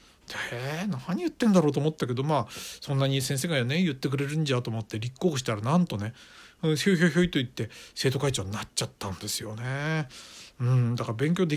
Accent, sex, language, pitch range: native, male, Japanese, 115-165 Hz